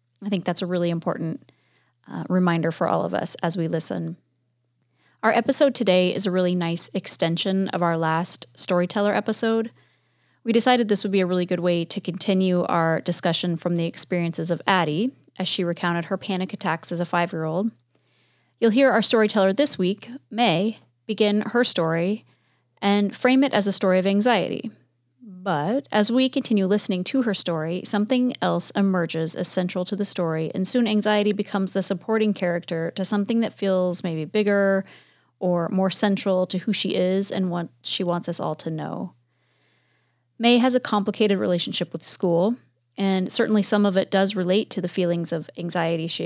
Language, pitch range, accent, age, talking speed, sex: English, 170-210 Hz, American, 30-49, 180 wpm, female